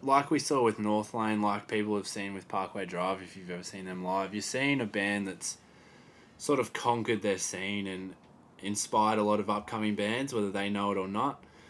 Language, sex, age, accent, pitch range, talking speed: English, male, 20-39, Australian, 95-105 Hz, 220 wpm